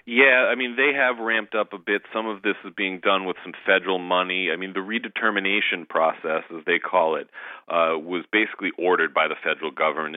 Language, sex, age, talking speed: English, male, 40-59, 210 wpm